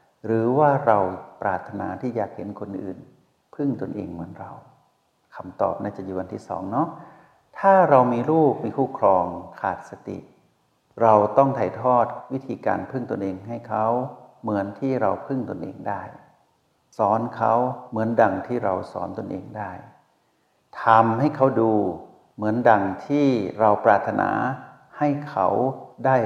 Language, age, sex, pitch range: Thai, 60-79, male, 100-125 Hz